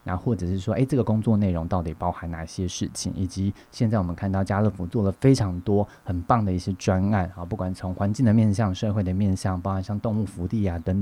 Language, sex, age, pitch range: Chinese, male, 20-39, 95-120 Hz